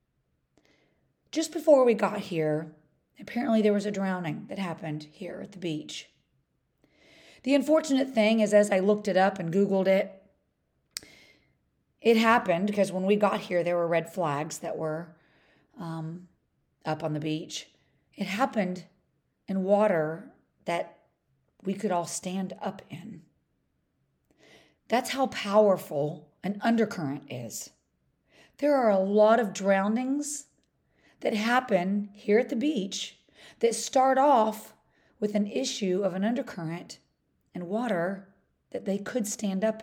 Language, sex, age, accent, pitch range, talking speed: English, female, 40-59, American, 180-225 Hz, 135 wpm